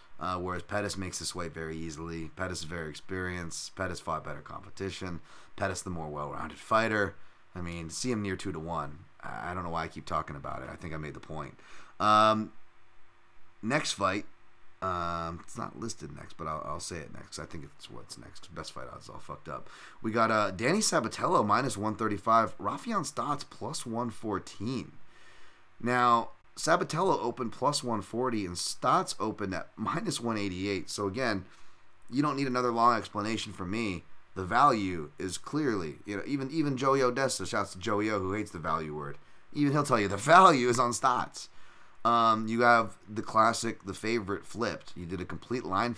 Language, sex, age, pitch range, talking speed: English, male, 30-49, 85-115 Hz, 185 wpm